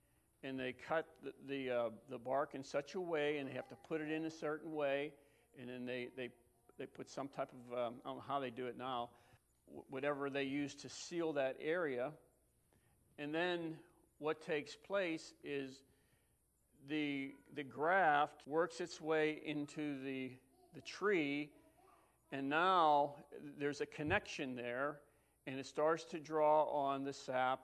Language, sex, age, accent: English, male, 50-69, American